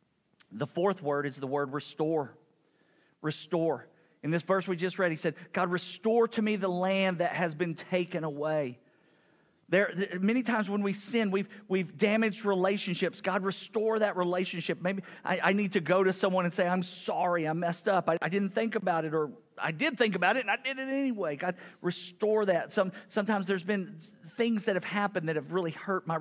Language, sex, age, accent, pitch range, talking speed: English, male, 50-69, American, 155-195 Hz, 205 wpm